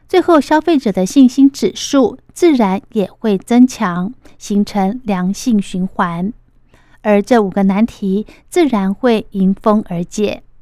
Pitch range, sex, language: 205-270 Hz, female, Chinese